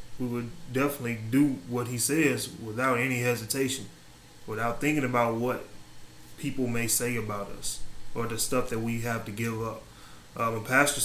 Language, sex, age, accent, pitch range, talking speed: English, male, 20-39, American, 115-130 Hz, 170 wpm